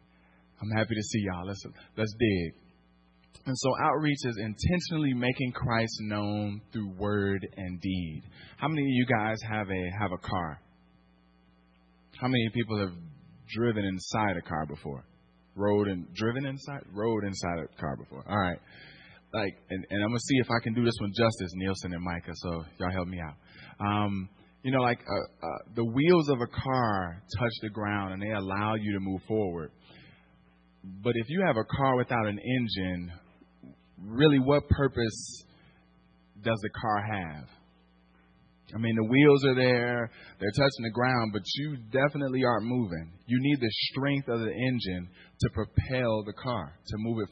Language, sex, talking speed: English, male, 175 wpm